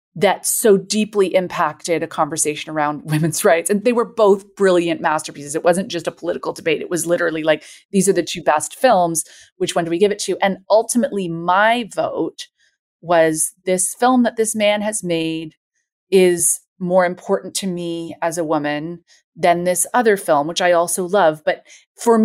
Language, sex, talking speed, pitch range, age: English, female, 185 wpm, 165-200 Hz, 30-49